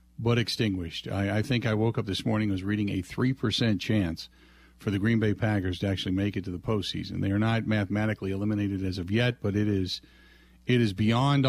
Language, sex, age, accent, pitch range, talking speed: English, male, 50-69, American, 105-145 Hz, 220 wpm